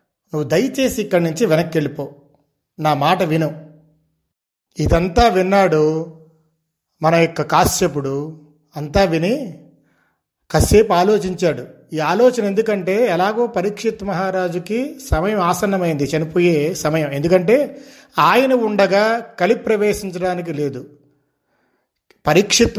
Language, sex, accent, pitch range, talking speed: Telugu, male, native, 160-210 Hz, 90 wpm